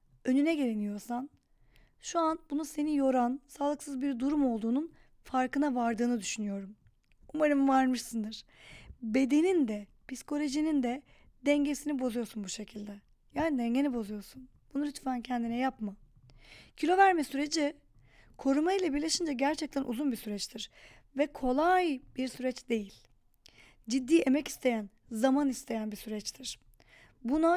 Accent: native